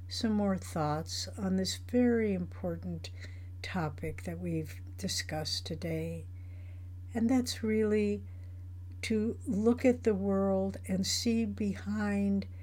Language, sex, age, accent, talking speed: English, female, 60-79, American, 110 wpm